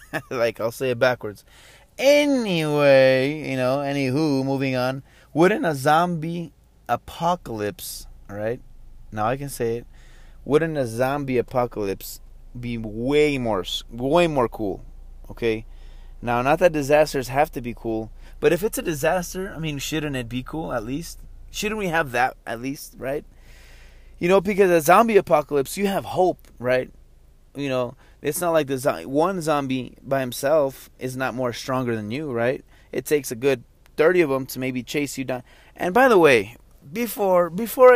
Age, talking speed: 20-39, 170 wpm